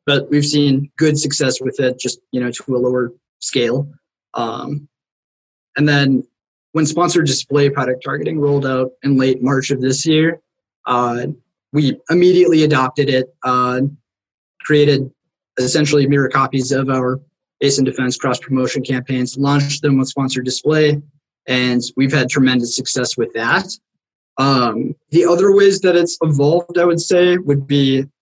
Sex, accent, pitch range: male, American, 130-170 Hz